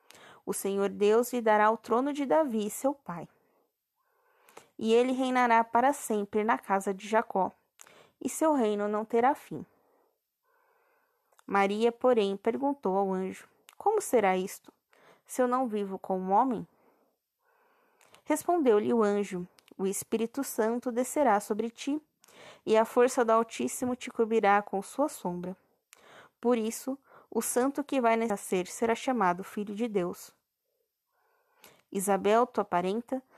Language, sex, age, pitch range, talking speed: Portuguese, female, 20-39, 210-290 Hz, 135 wpm